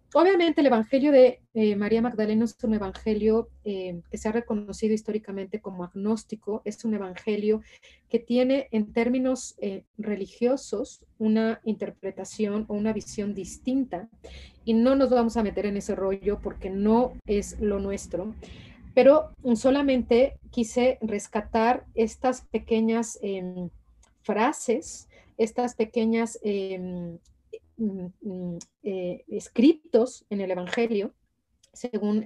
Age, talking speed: 30-49, 115 wpm